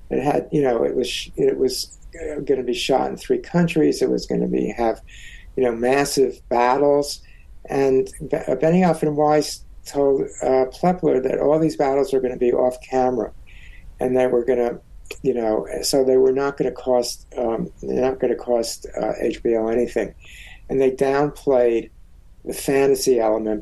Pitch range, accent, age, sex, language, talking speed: 115-145 Hz, American, 60-79, male, English, 180 wpm